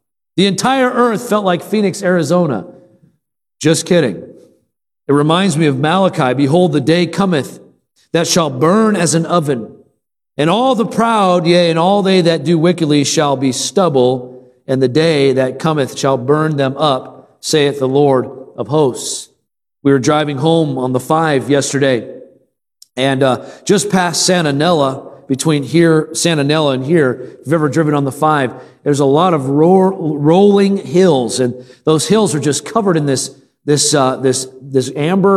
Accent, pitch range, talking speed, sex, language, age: American, 135-175 Hz, 170 wpm, male, English, 40-59